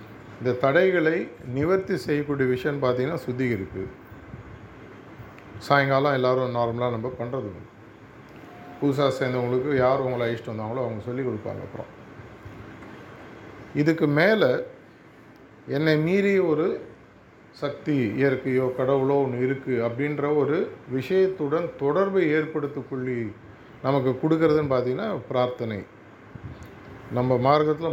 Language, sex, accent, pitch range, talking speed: Tamil, male, native, 125-150 Hz, 90 wpm